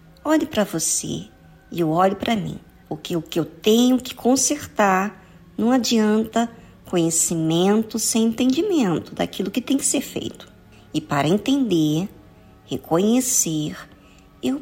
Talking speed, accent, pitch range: 125 wpm, Brazilian, 175-245 Hz